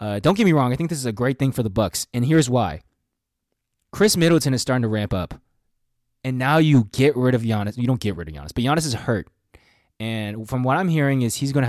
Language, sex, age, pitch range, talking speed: English, male, 20-39, 105-130 Hz, 260 wpm